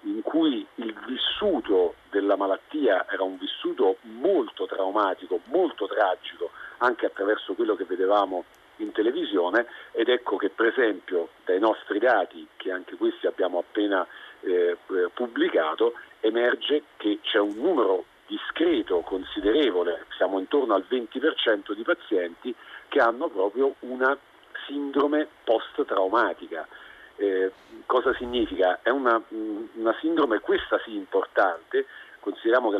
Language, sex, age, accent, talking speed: Italian, male, 50-69, native, 120 wpm